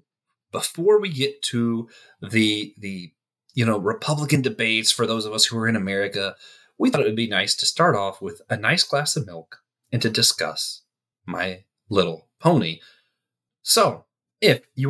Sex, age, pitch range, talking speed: male, 30-49, 110-145 Hz, 160 wpm